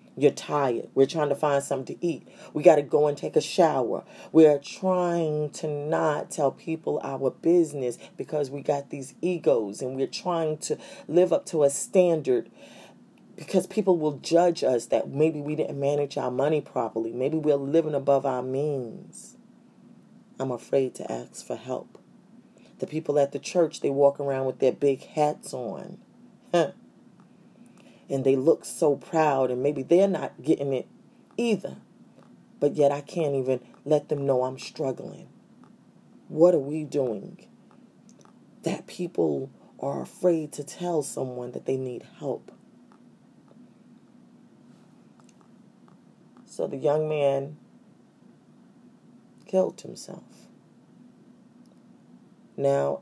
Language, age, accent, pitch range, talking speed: English, 40-59, American, 135-185 Hz, 140 wpm